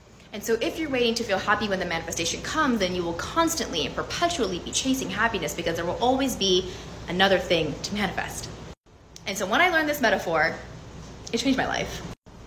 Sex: female